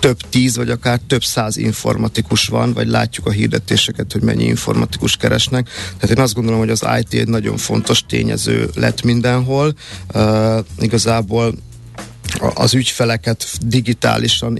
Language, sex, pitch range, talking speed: Hungarian, male, 110-125 Hz, 145 wpm